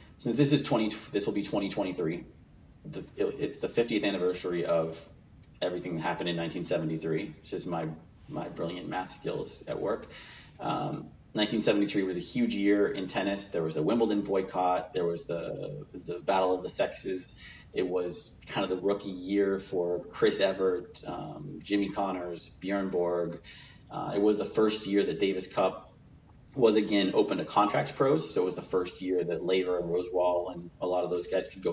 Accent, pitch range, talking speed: American, 90-105 Hz, 185 wpm